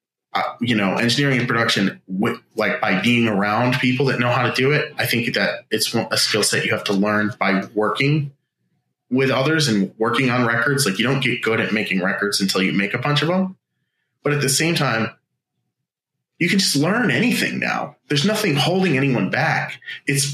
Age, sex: 30-49, male